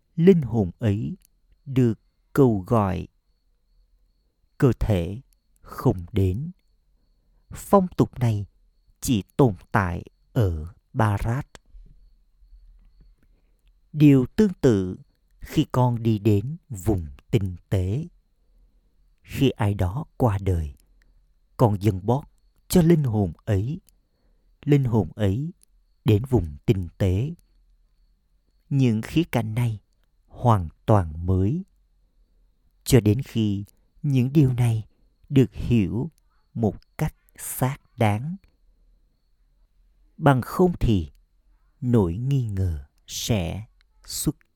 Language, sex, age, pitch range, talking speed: Vietnamese, male, 50-69, 85-130 Hz, 100 wpm